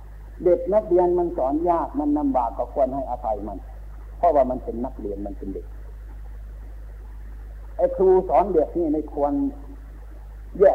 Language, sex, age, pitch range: Thai, male, 60-79, 120-180 Hz